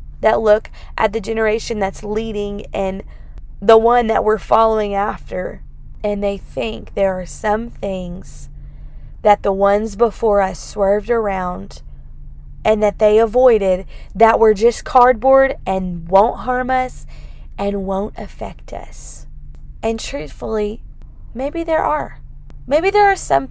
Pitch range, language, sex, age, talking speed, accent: 185-230 Hz, English, female, 20-39, 135 wpm, American